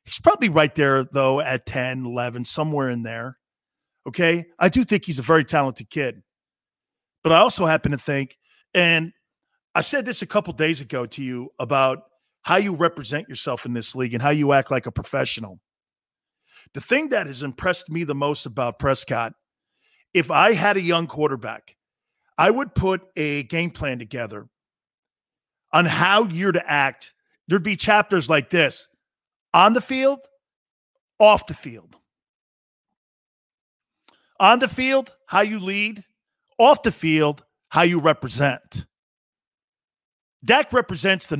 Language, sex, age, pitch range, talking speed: English, male, 40-59, 140-205 Hz, 150 wpm